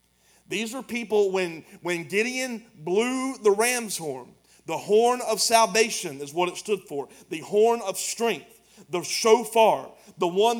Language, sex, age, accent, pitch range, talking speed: English, male, 40-59, American, 140-215 Hz, 155 wpm